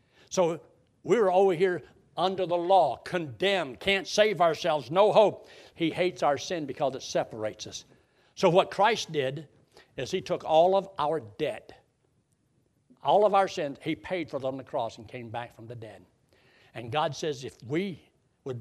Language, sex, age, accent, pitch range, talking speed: English, male, 60-79, American, 135-195 Hz, 175 wpm